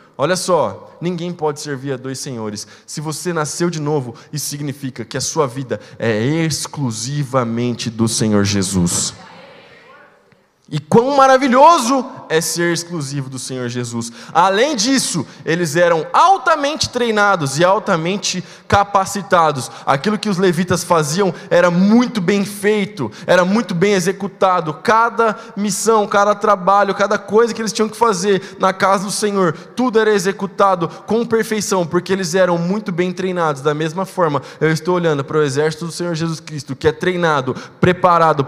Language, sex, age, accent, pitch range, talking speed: Portuguese, male, 20-39, Brazilian, 155-220 Hz, 155 wpm